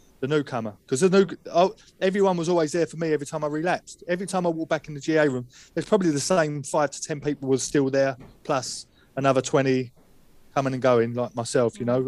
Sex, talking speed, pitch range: male, 225 wpm, 140-165 Hz